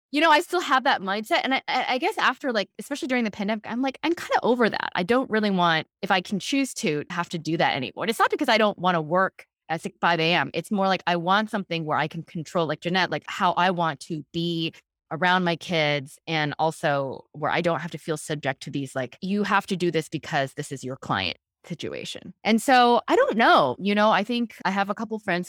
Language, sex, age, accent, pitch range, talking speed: English, female, 20-39, American, 145-200 Hz, 260 wpm